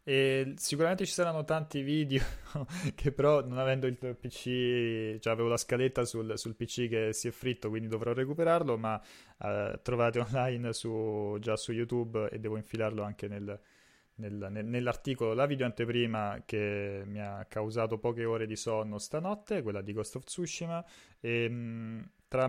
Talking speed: 165 wpm